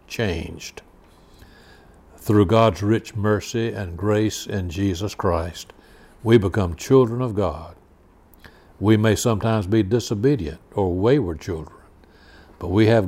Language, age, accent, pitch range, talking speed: English, 60-79, American, 95-125 Hz, 120 wpm